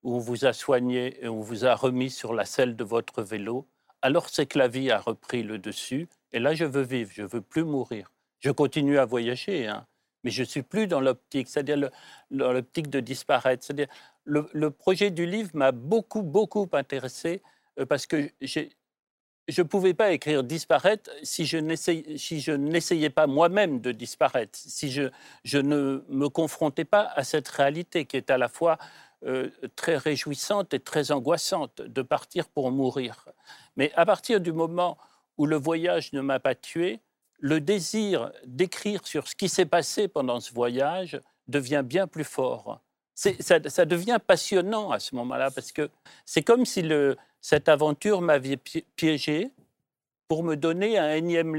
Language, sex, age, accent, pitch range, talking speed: French, male, 40-59, French, 135-175 Hz, 180 wpm